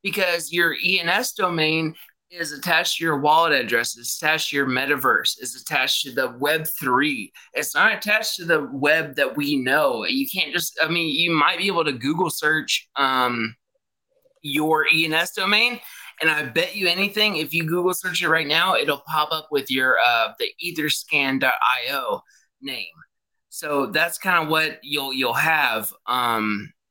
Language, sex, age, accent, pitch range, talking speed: English, male, 20-39, American, 150-190 Hz, 165 wpm